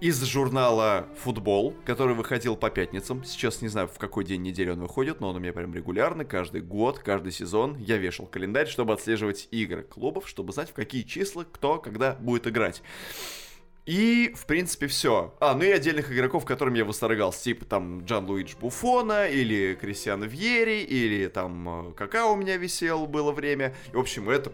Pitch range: 100-135 Hz